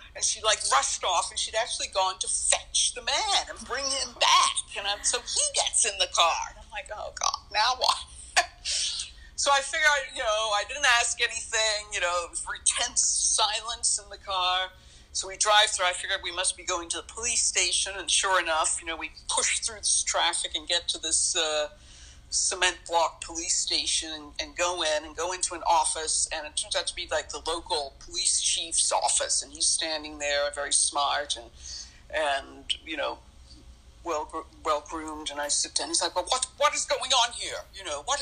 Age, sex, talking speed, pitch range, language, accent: 50-69, female, 210 wpm, 160-255 Hz, English, American